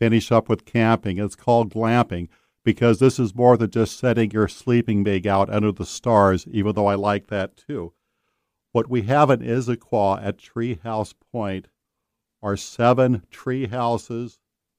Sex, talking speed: male, 160 wpm